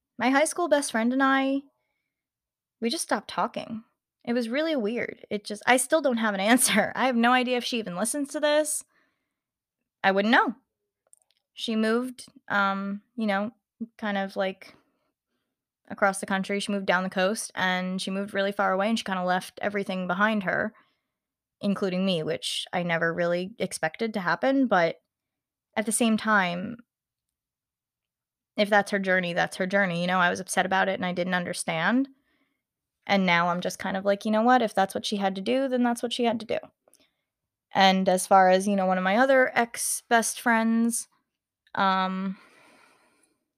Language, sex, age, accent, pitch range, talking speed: English, female, 20-39, American, 190-235 Hz, 185 wpm